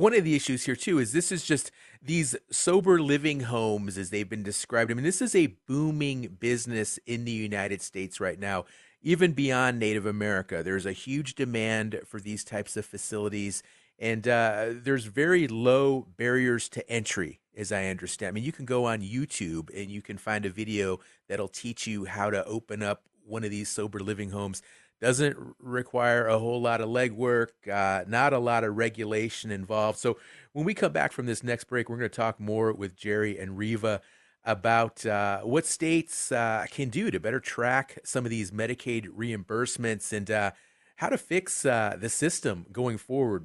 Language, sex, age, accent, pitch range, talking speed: English, male, 40-59, American, 105-130 Hz, 190 wpm